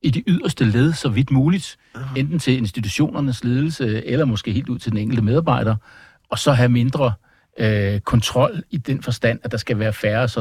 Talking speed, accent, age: 190 wpm, native, 60-79